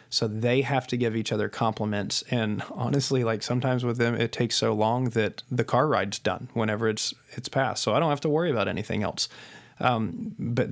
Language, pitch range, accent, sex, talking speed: English, 115-145 Hz, American, male, 215 wpm